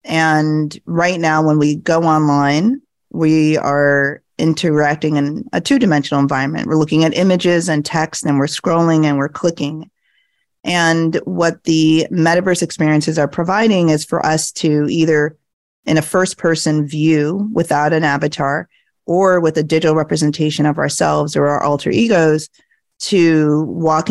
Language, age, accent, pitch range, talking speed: English, 30-49, American, 150-175 Hz, 145 wpm